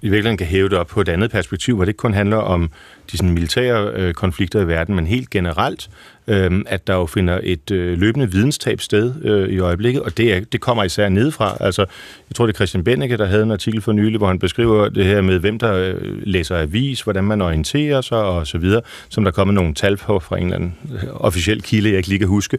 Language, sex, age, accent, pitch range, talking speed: Danish, male, 40-59, native, 95-120 Hz, 240 wpm